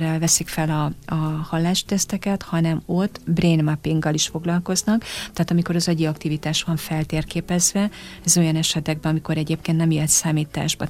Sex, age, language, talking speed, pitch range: female, 30-49, Hungarian, 145 wpm, 155-175 Hz